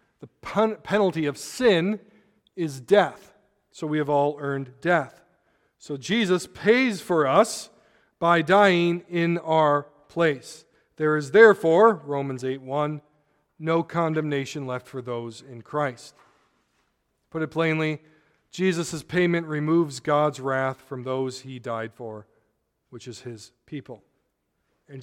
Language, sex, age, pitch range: English, male, 40-59, 130-165 Hz